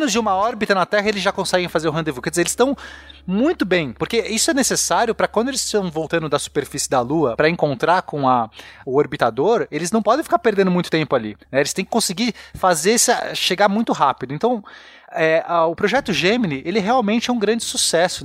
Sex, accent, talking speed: male, Brazilian, 215 wpm